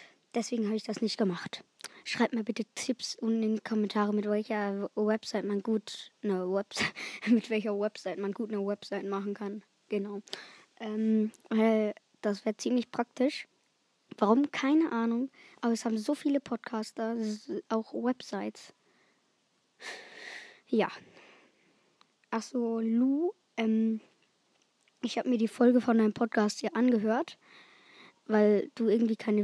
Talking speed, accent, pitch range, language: 120 wpm, German, 215-245 Hz, German